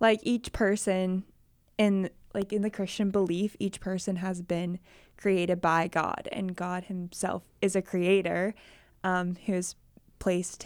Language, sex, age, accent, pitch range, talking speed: English, female, 20-39, American, 180-215 Hz, 140 wpm